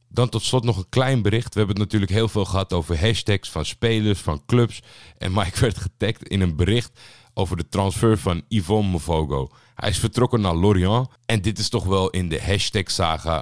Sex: male